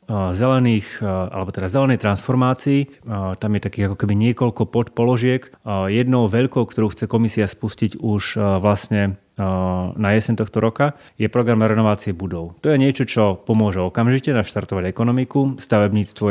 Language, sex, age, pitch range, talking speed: Slovak, male, 30-49, 100-115 Hz, 135 wpm